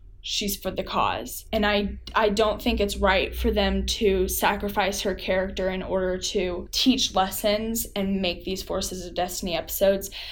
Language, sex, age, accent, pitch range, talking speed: English, female, 10-29, American, 190-220 Hz, 170 wpm